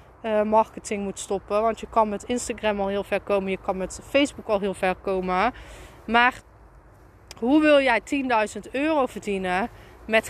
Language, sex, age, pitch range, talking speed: Dutch, female, 20-39, 210-280 Hz, 170 wpm